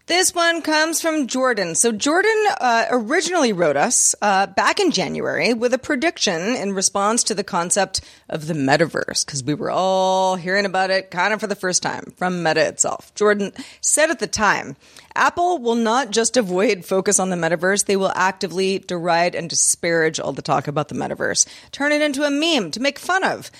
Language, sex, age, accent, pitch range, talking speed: English, female, 30-49, American, 185-250 Hz, 195 wpm